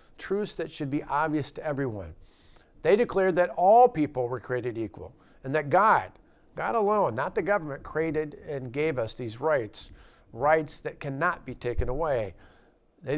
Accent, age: American, 50-69